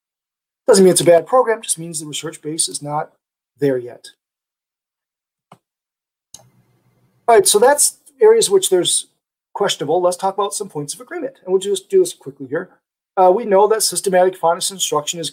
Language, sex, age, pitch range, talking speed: English, male, 40-59, 150-215 Hz, 175 wpm